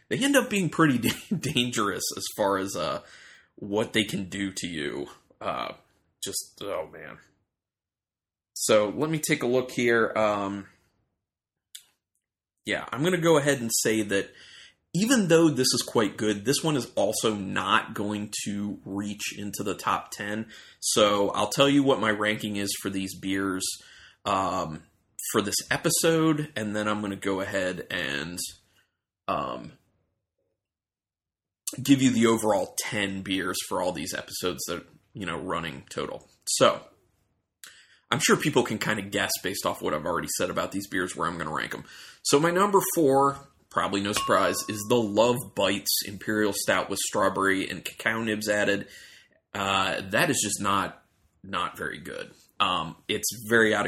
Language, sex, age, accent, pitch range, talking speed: English, male, 20-39, American, 100-125 Hz, 165 wpm